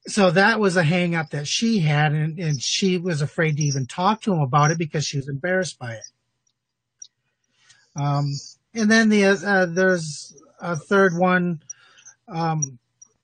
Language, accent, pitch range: English, American, 150-200 Hz